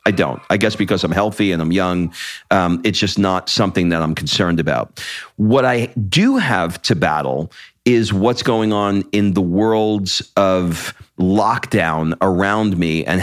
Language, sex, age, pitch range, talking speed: English, male, 40-59, 90-115 Hz, 170 wpm